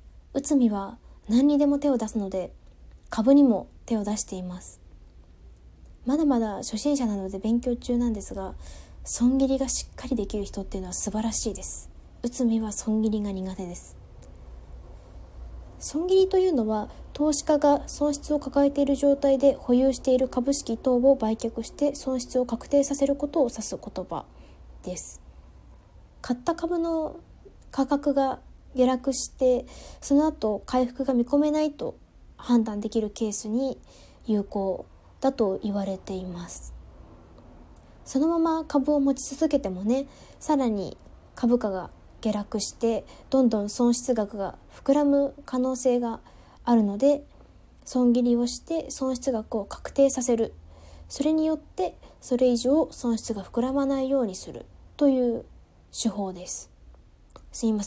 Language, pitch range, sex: Japanese, 200-275 Hz, female